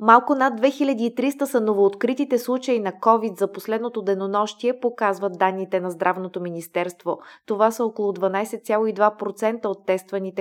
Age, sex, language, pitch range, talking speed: 20-39, female, Bulgarian, 190-235 Hz, 125 wpm